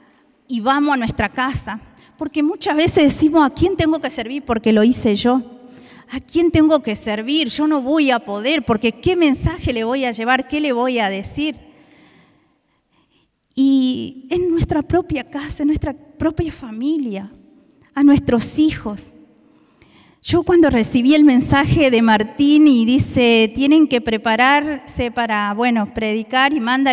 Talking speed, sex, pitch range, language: 155 wpm, female, 235-295 Hz, Spanish